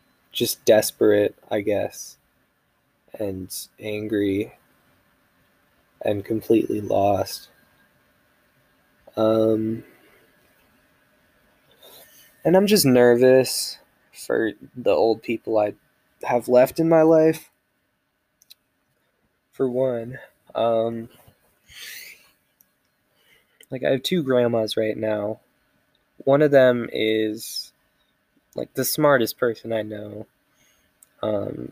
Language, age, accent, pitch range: English, 20-39, American, 105-125 Hz